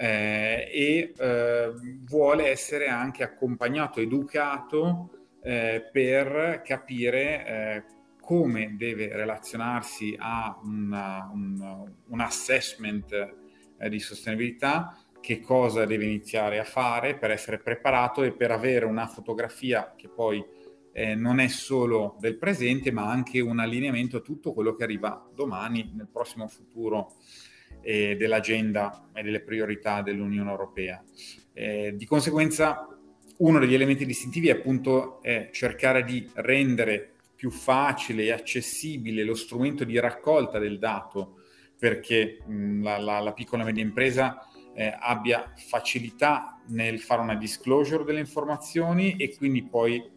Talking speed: 125 wpm